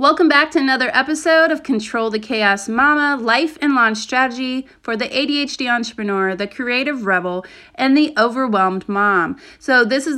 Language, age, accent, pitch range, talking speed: English, 30-49, American, 210-265 Hz, 165 wpm